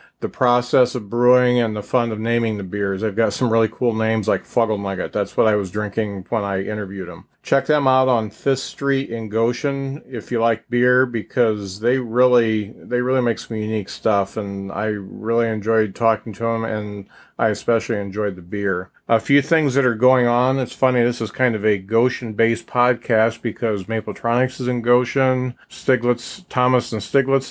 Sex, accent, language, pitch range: male, American, English, 110-130 Hz